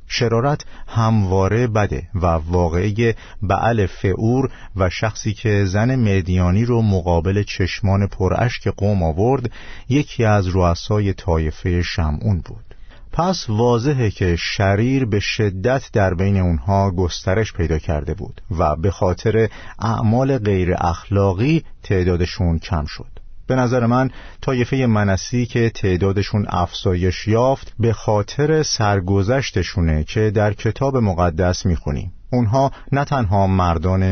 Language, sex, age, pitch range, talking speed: Persian, male, 50-69, 90-115 Hz, 115 wpm